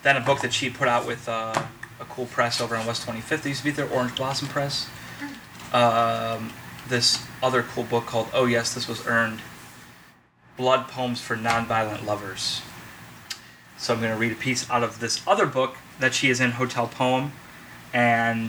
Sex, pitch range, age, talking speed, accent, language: male, 115-130 Hz, 30-49, 190 wpm, American, English